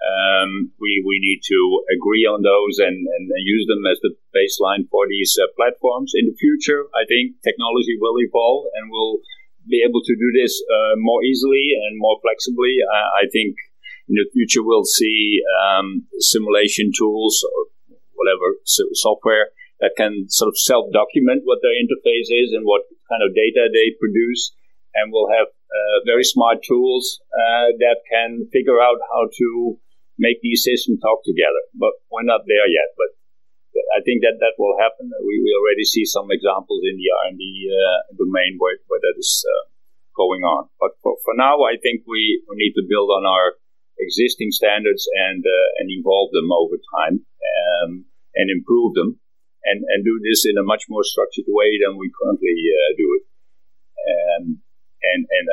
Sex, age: male, 50-69